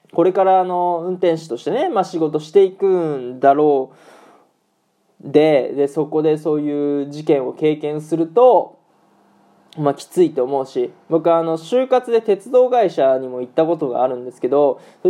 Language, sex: Japanese, male